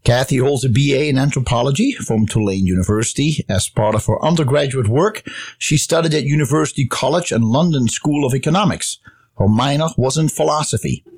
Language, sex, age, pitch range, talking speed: English, male, 50-69, 110-150 Hz, 160 wpm